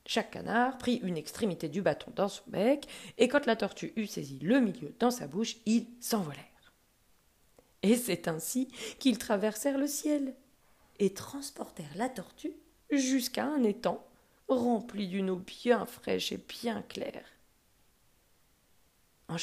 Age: 40-59